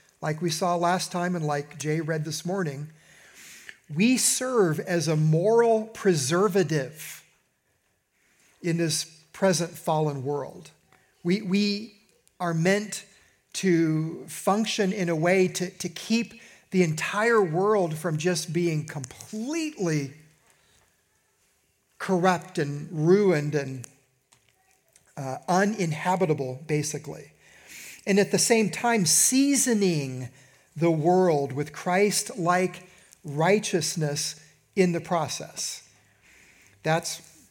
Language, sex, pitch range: English, male, 150-185 Hz